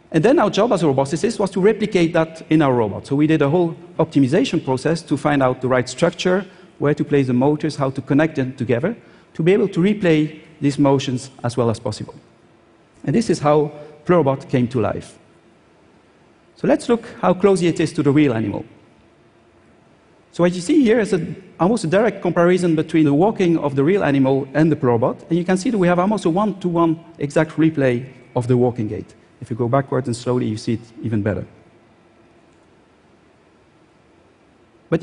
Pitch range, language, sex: 140-185 Hz, Chinese, male